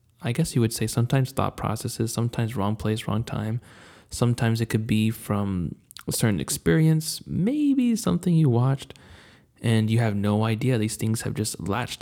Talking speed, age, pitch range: 175 wpm, 20-39, 105-125 Hz